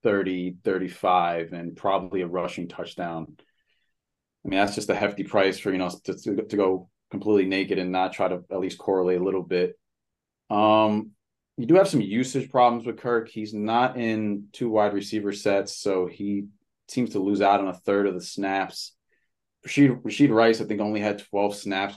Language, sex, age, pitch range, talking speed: English, male, 30-49, 95-110 Hz, 190 wpm